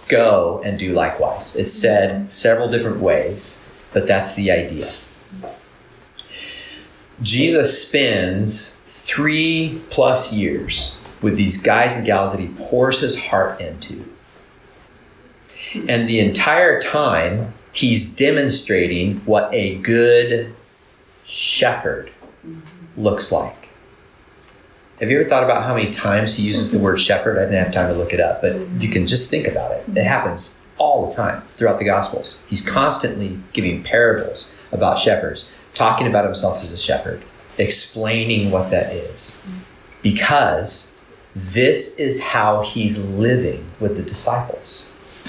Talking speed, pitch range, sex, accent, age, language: 135 wpm, 95-115 Hz, male, American, 40-59, English